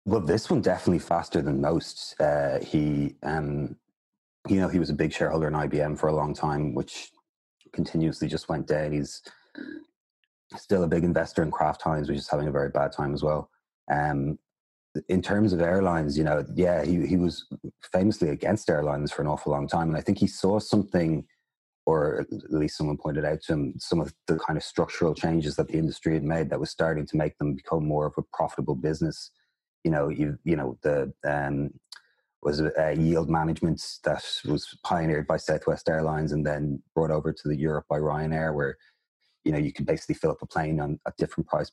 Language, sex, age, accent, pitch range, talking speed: English, male, 30-49, Irish, 75-80 Hz, 205 wpm